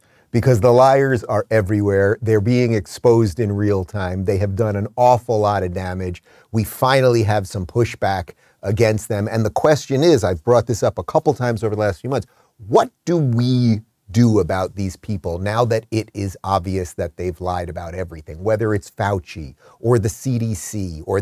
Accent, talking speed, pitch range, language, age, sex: American, 185 wpm, 100-125 Hz, English, 30-49, male